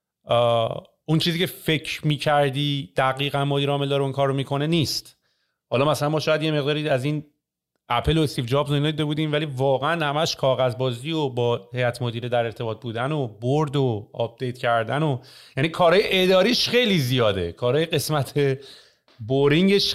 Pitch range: 120-160 Hz